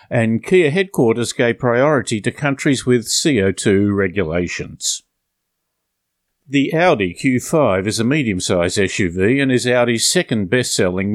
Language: English